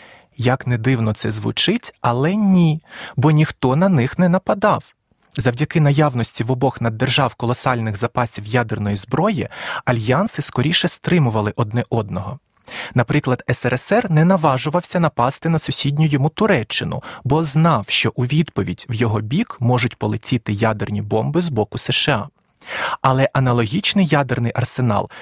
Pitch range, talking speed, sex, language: 120-155 Hz, 130 wpm, male, Ukrainian